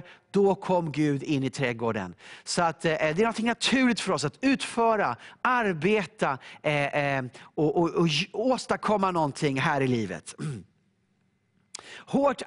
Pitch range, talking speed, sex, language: 150-200 Hz, 110 wpm, male, English